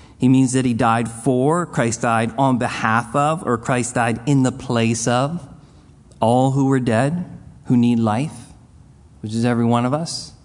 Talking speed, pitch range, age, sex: 180 wpm, 115-140 Hz, 40-59, male